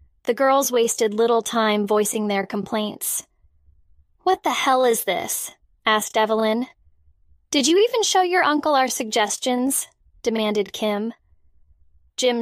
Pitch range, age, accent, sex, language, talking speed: 205-245 Hz, 10-29, American, female, English, 125 wpm